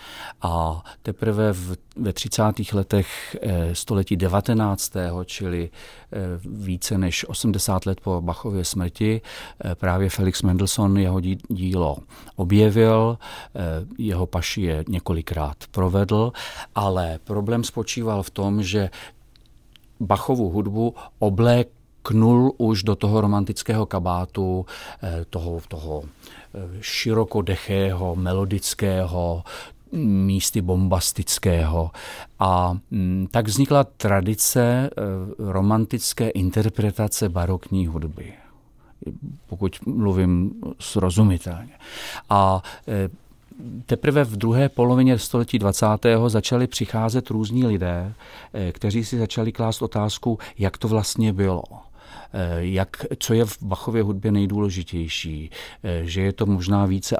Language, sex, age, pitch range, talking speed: Czech, male, 40-59, 90-110 Hz, 95 wpm